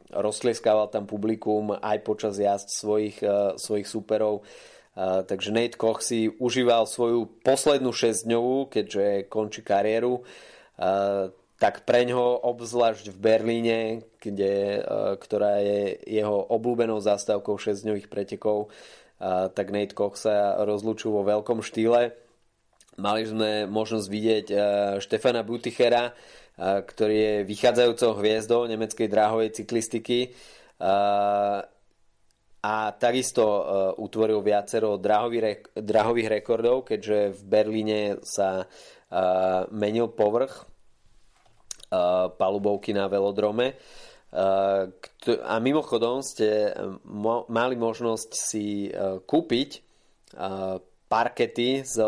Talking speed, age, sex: 90 wpm, 20-39, male